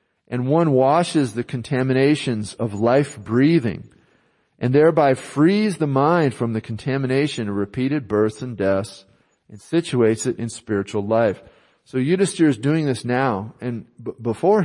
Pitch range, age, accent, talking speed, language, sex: 110-140 Hz, 40-59, American, 150 wpm, English, male